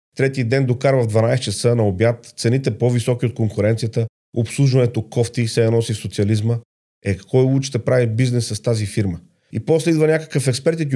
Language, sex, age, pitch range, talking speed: Bulgarian, male, 40-59, 110-135 Hz, 190 wpm